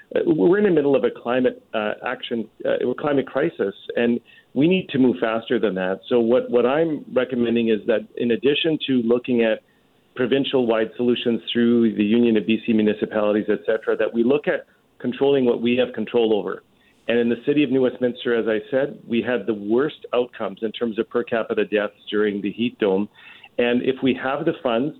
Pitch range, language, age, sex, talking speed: 110-130 Hz, English, 40-59, male, 205 wpm